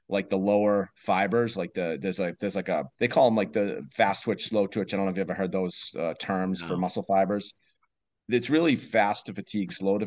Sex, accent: male, American